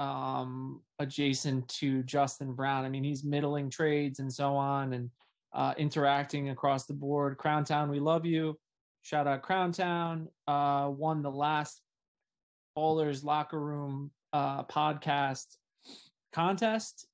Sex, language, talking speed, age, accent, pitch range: male, English, 135 wpm, 20-39, American, 140-170 Hz